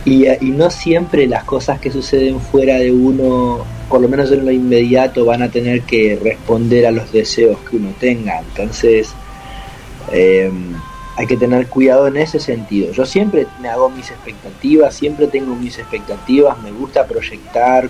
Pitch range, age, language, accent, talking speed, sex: 115-140 Hz, 30-49, Spanish, Argentinian, 170 wpm, male